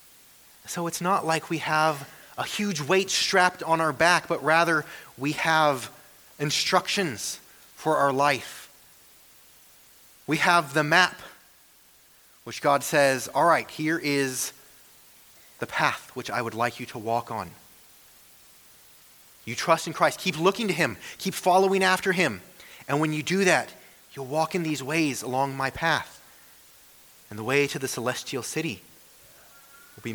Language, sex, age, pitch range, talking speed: English, male, 30-49, 110-160 Hz, 150 wpm